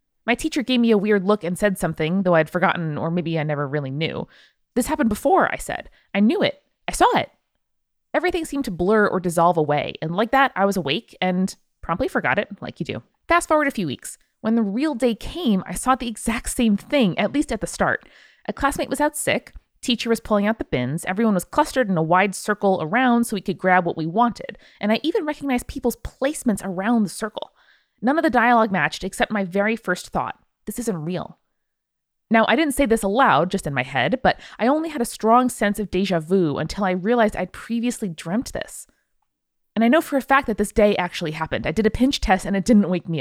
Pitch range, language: 180-250 Hz, English